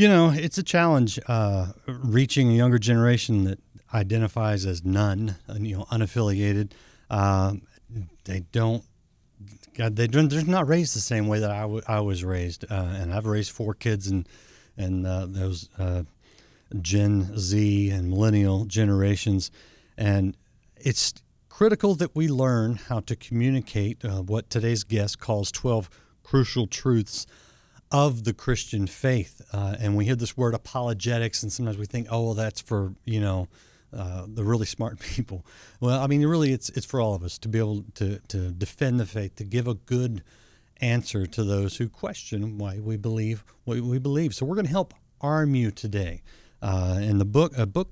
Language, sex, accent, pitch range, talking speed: English, male, American, 100-125 Hz, 175 wpm